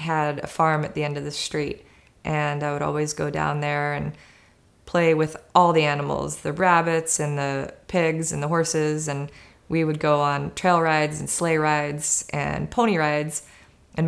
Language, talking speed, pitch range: English, 190 wpm, 145-160 Hz